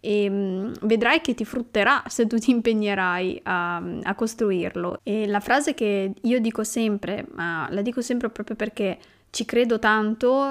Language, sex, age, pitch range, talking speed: Italian, female, 20-39, 205-255 Hz, 160 wpm